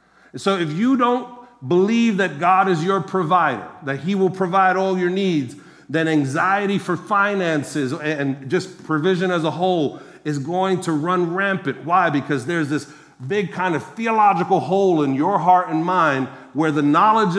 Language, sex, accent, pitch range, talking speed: English, male, American, 150-195 Hz, 170 wpm